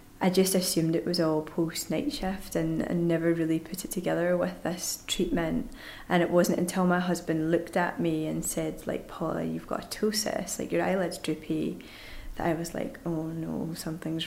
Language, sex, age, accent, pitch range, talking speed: English, female, 20-39, British, 160-185 Hz, 200 wpm